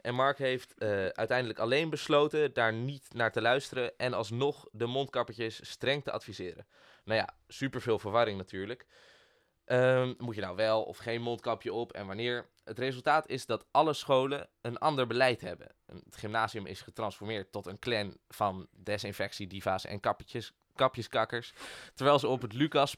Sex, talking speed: male, 160 wpm